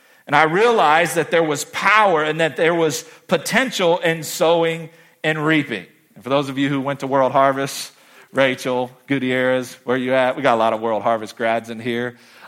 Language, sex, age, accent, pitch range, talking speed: English, male, 50-69, American, 155-220 Hz, 200 wpm